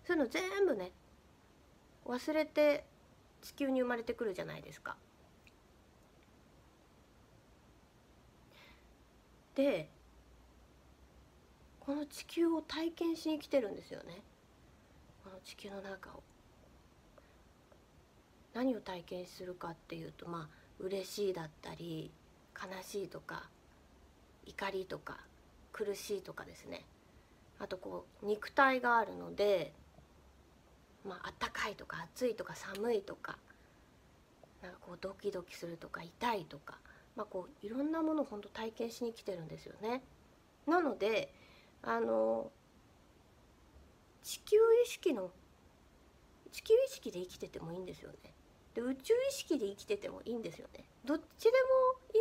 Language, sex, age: Japanese, female, 30-49